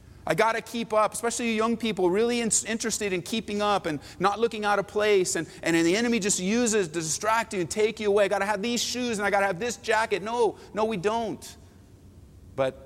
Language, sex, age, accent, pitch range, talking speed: English, male, 30-49, American, 100-160 Hz, 240 wpm